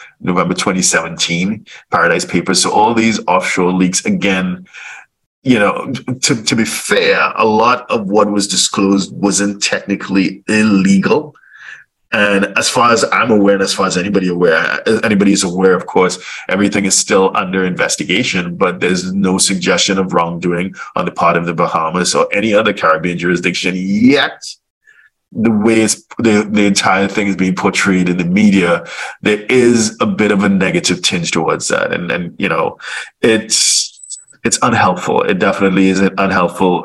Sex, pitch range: male, 90-105 Hz